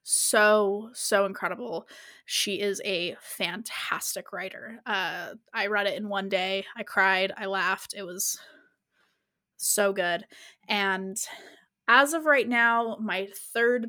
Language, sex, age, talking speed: English, female, 20-39, 130 wpm